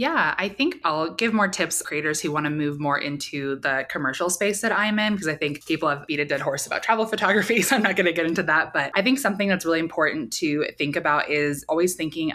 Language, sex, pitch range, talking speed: English, female, 145-185 Hz, 255 wpm